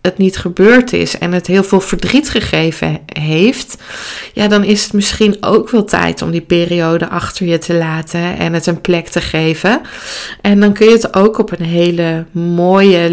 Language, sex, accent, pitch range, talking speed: Dutch, female, Dutch, 165-190 Hz, 190 wpm